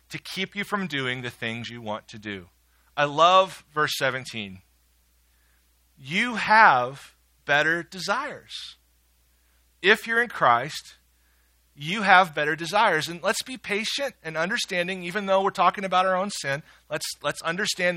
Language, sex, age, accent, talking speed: English, male, 40-59, American, 145 wpm